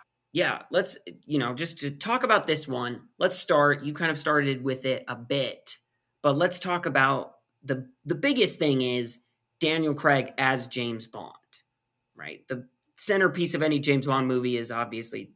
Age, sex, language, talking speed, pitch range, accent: 20-39, male, English, 170 wpm, 125-150 Hz, American